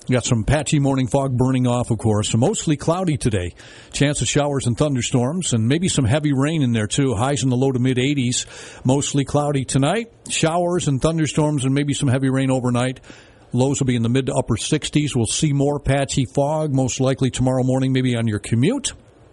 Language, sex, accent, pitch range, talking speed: English, male, American, 110-135 Hz, 205 wpm